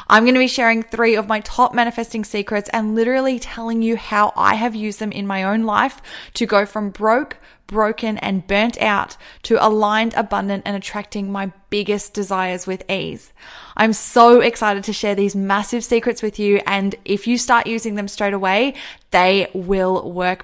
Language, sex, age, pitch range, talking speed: English, female, 20-39, 195-235 Hz, 185 wpm